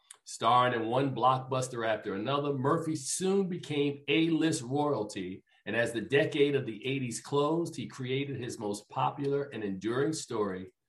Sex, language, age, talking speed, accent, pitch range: male, English, 50-69, 150 wpm, American, 115-155 Hz